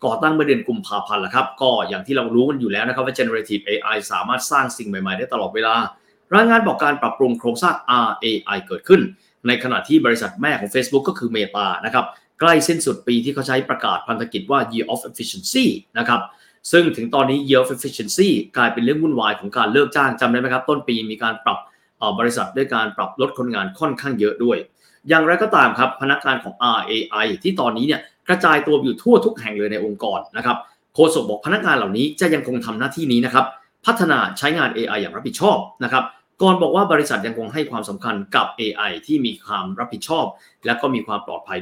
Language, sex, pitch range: Thai, male, 115-170 Hz